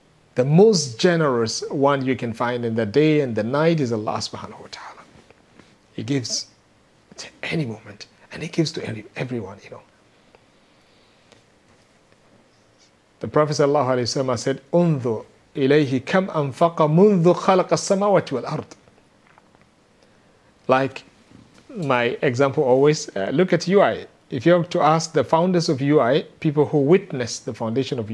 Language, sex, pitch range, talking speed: English, male, 135-180 Hz, 125 wpm